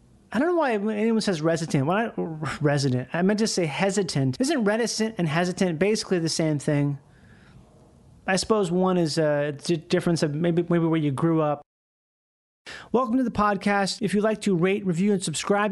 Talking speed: 185 wpm